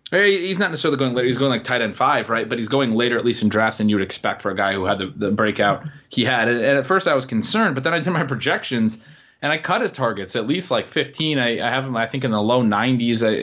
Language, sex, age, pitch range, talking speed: English, male, 20-39, 110-140 Hz, 280 wpm